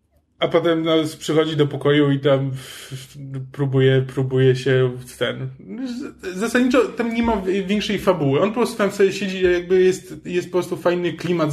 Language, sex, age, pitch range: Polish, male, 20-39, 140-185 Hz